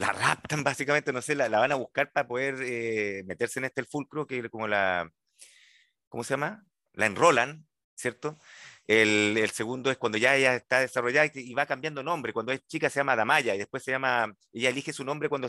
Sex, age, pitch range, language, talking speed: male, 30-49, 125-155 Hz, Spanish, 210 wpm